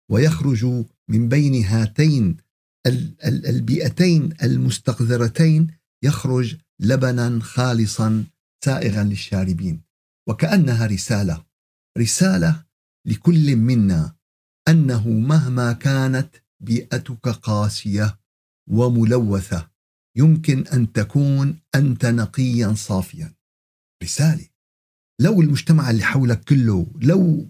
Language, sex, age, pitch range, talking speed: Arabic, male, 50-69, 110-155 Hz, 75 wpm